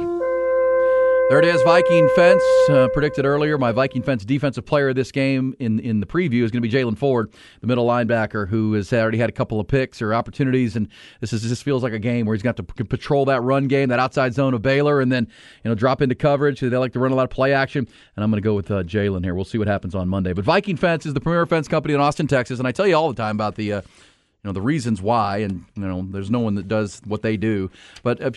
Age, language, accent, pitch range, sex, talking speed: 40-59, English, American, 110-145 Hz, male, 275 wpm